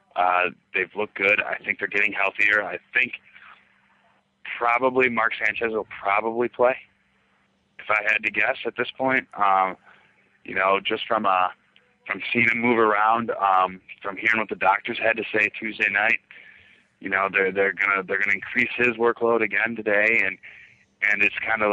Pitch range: 95-110 Hz